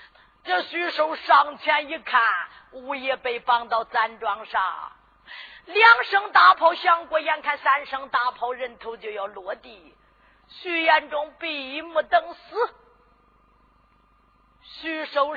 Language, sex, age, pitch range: Chinese, female, 50-69, 275-340 Hz